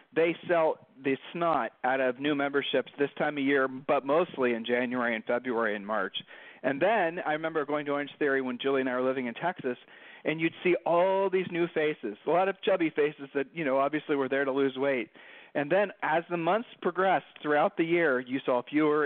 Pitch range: 135-165 Hz